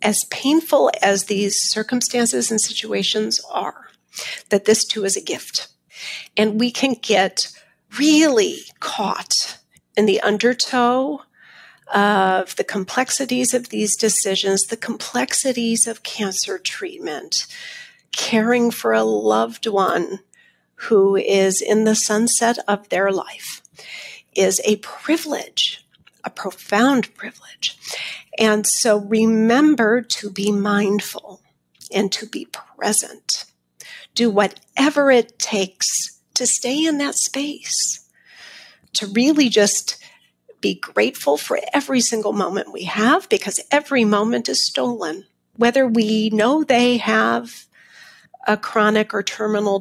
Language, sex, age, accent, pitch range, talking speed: English, female, 40-59, American, 205-255 Hz, 115 wpm